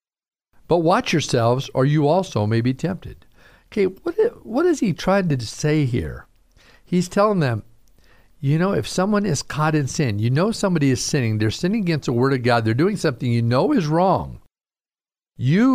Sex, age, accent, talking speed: male, 50-69, American, 185 wpm